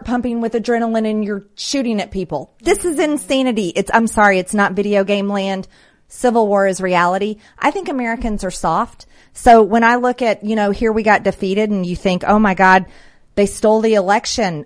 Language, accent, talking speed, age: English, American, 200 wpm, 40-59